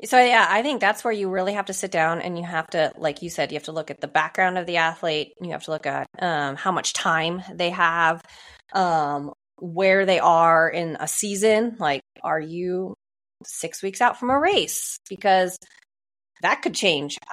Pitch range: 160-205 Hz